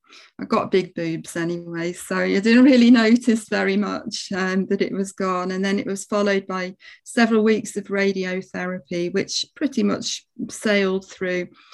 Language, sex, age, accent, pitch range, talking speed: English, female, 40-59, British, 190-220 Hz, 165 wpm